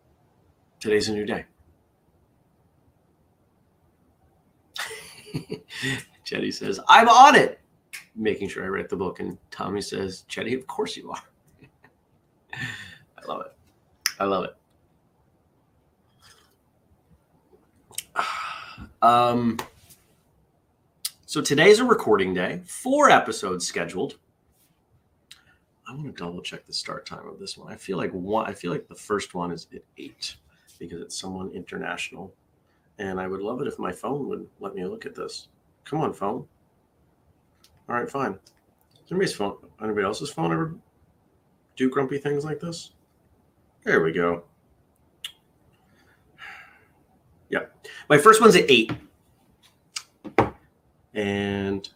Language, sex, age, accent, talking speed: English, male, 30-49, American, 125 wpm